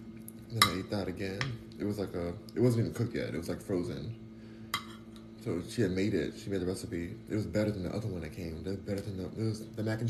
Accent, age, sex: American, 20-39, male